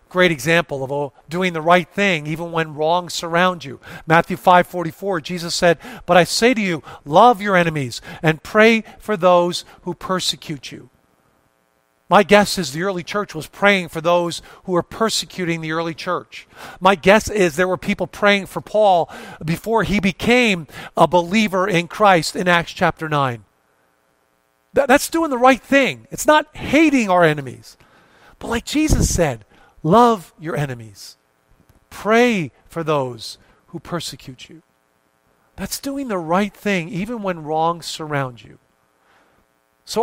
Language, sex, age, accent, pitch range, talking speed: English, male, 50-69, American, 145-210 Hz, 150 wpm